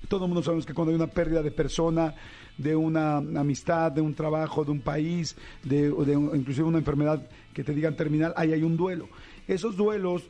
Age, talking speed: 50-69, 210 wpm